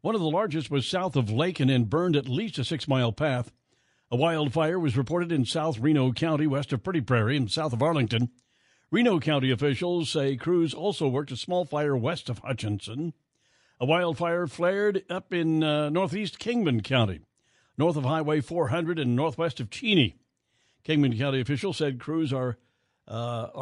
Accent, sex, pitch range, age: American, male, 125-160 Hz, 60-79